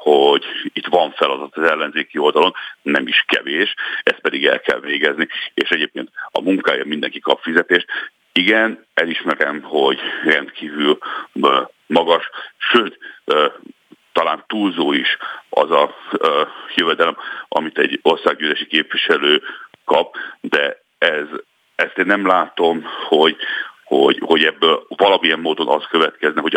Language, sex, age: Hungarian, male, 60-79